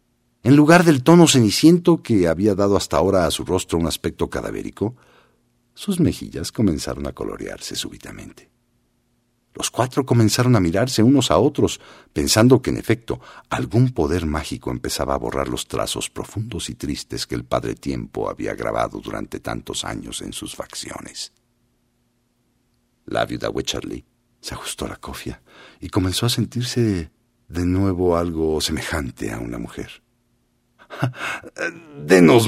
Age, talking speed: 50-69, 140 wpm